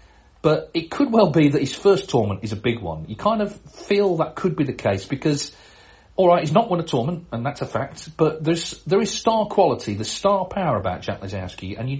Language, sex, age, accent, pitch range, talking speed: English, male, 40-59, British, 105-155 Hz, 245 wpm